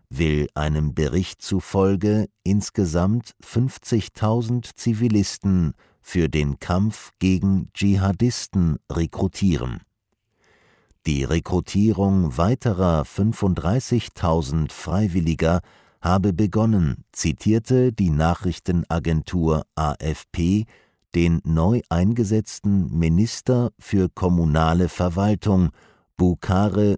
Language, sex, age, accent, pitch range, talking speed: German, male, 50-69, German, 80-105 Hz, 70 wpm